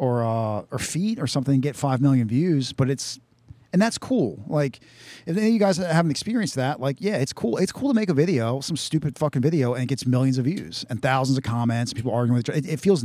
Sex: male